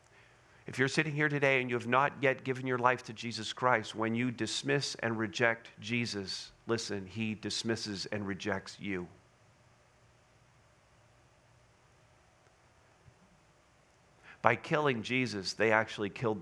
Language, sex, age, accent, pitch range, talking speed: English, male, 50-69, American, 105-125 Hz, 125 wpm